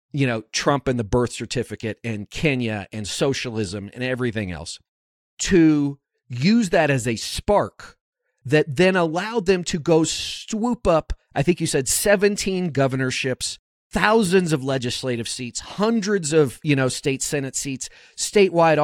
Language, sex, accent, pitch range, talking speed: English, male, American, 130-195 Hz, 145 wpm